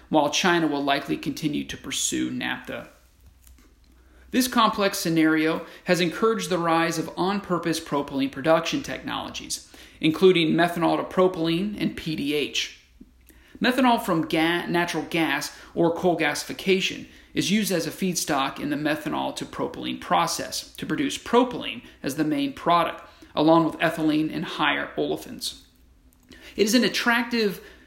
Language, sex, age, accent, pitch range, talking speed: English, male, 40-59, American, 155-195 Hz, 125 wpm